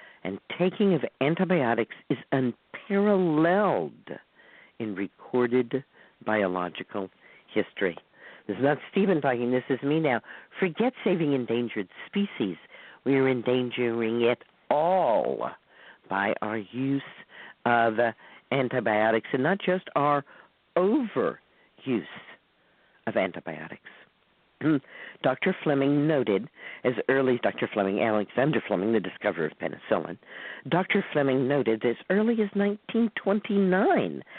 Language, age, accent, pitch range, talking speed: English, 50-69, American, 120-195 Hz, 105 wpm